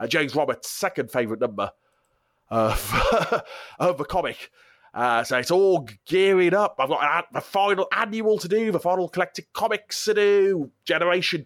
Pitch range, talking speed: 135-200 Hz, 155 wpm